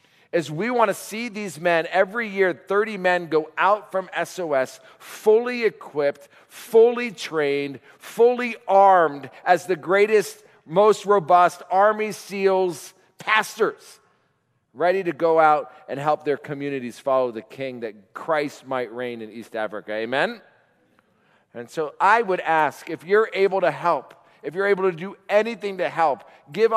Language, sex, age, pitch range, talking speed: English, male, 40-59, 130-190 Hz, 150 wpm